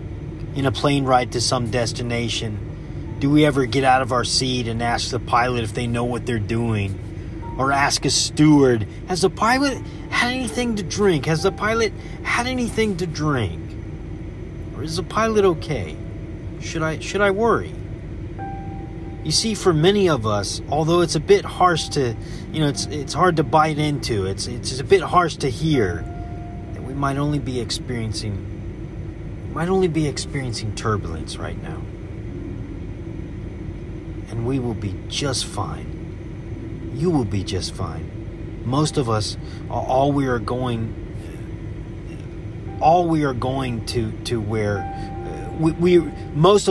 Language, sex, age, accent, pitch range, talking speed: English, male, 30-49, American, 110-160 Hz, 155 wpm